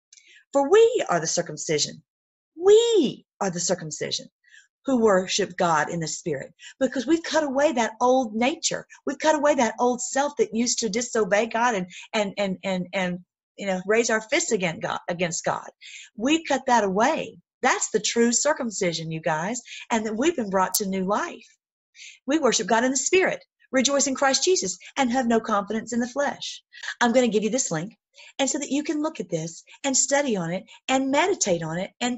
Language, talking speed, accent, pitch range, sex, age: English, 200 wpm, American, 185-265 Hz, female, 40-59